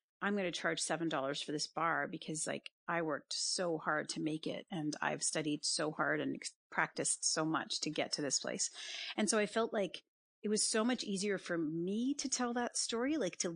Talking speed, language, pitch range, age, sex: 215 wpm, English, 160-195 Hz, 40-59, female